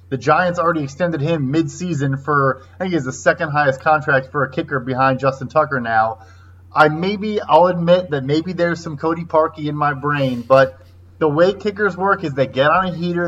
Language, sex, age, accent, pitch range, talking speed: English, male, 20-39, American, 135-170 Hz, 210 wpm